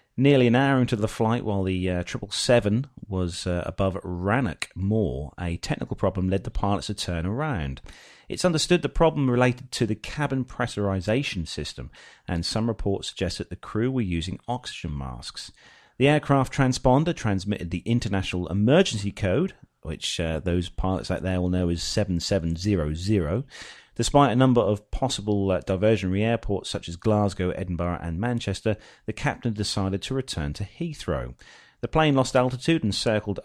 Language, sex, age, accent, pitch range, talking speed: English, male, 30-49, British, 90-120 Hz, 160 wpm